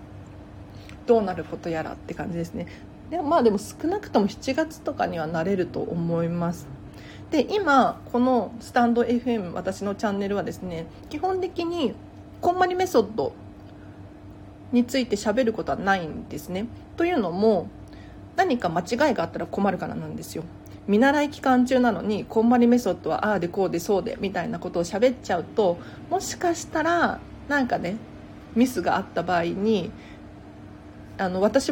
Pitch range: 160-245 Hz